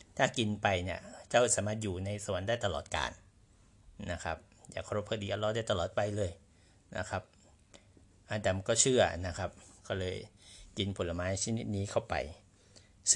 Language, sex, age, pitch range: Thai, male, 60-79, 95-110 Hz